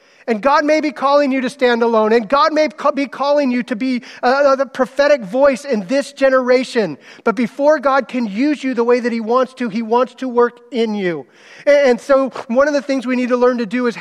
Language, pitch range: English, 160-245 Hz